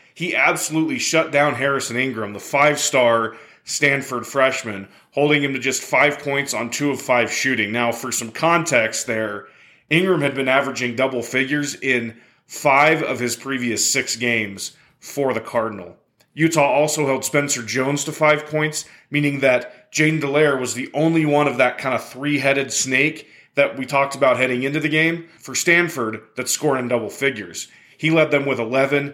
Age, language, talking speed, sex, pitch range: 30-49, English, 175 wpm, male, 125-155 Hz